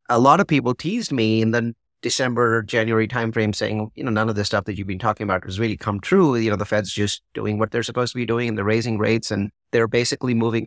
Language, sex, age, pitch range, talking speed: English, male, 30-49, 105-135 Hz, 265 wpm